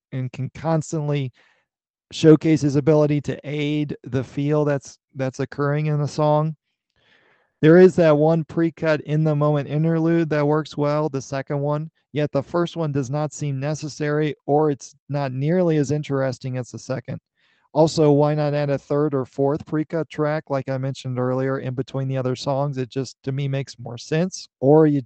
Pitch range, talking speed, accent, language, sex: 135-160 Hz, 175 wpm, American, English, male